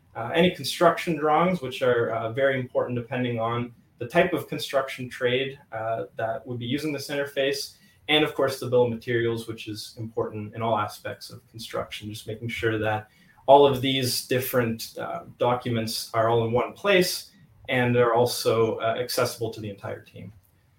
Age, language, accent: 20-39, English, American